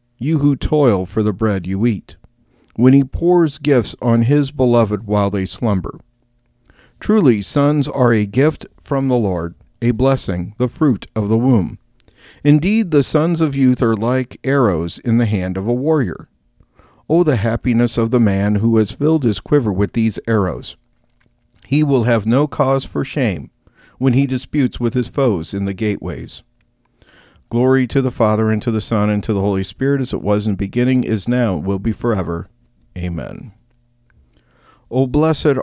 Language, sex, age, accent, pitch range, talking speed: English, male, 50-69, American, 105-130 Hz, 175 wpm